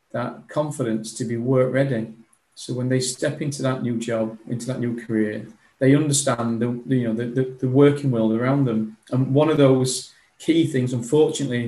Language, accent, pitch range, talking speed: English, British, 120-140 Hz, 170 wpm